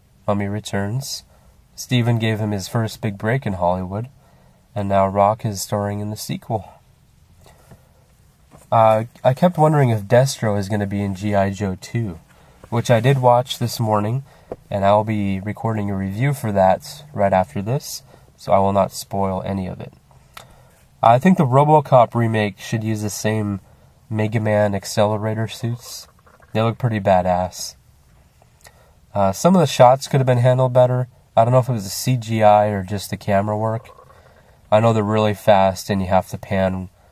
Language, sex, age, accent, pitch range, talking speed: English, male, 20-39, American, 100-120 Hz, 175 wpm